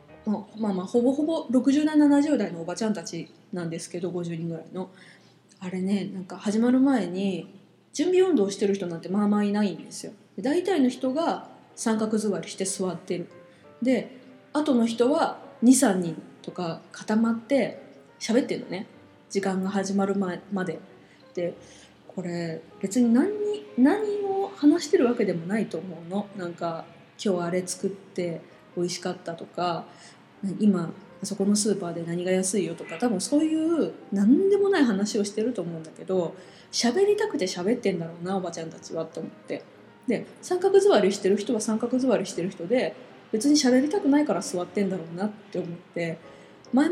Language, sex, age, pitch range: Japanese, female, 20-39, 180-250 Hz